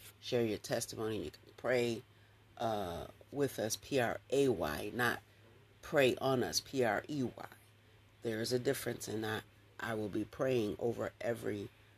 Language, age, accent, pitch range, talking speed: English, 40-59, American, 105-115 Hz, 135 wpm